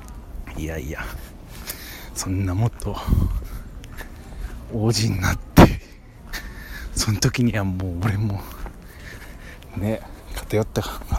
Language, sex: Japanese, male